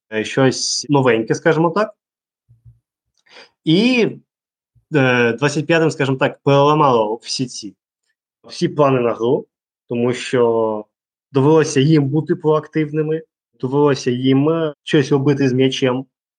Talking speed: 100 wpm